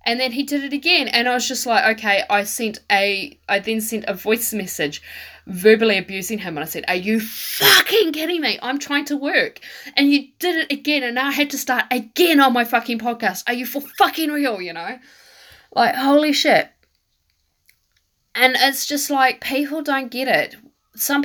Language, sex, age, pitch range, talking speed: English, female, 10-29, 205-290 Hz, 200 wpm